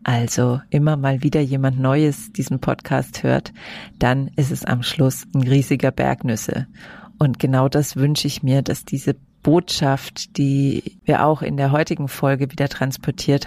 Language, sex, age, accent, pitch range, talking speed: German, female, 40-59, German, 130-155 Hz, 155 wpm